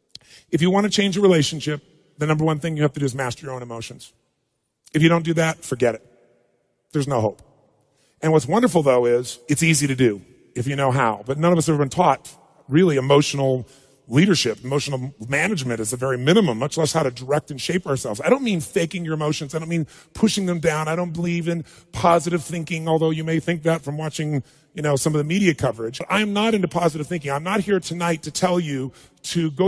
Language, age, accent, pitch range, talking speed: English, 40-59, American, 135-175 Hz, 230 wpm